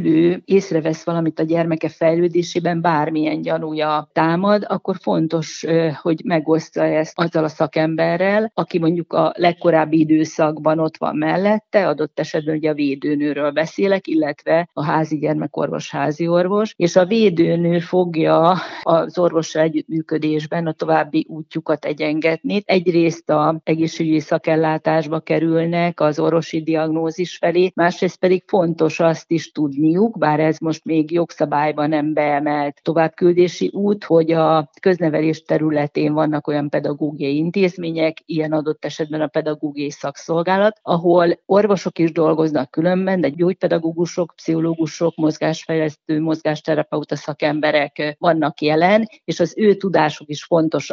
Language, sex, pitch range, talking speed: Hungarian, female, 155-170 Hz, 125 wpm